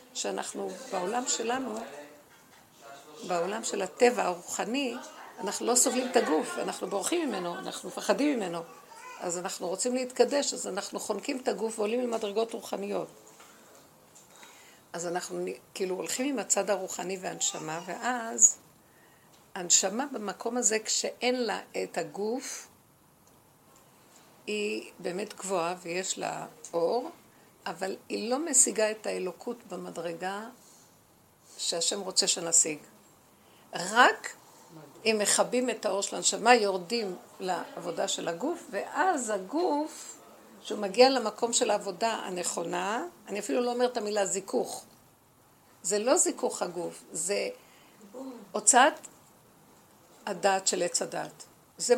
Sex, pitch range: female, 185-245 Hz